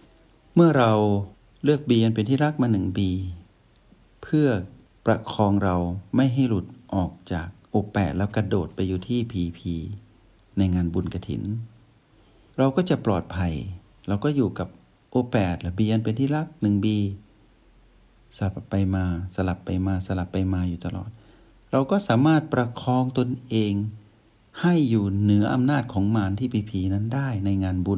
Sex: male